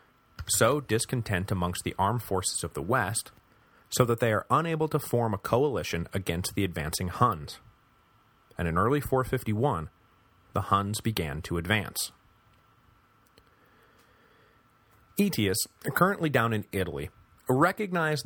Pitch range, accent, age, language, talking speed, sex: 95-120 Hz, American, 30-49, English, 120 wpm, male